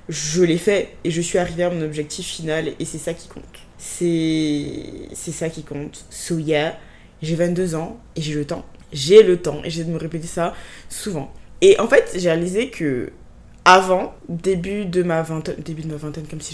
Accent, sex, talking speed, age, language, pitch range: French, female, 205 wpm, 20-39, French, 160-200 Hz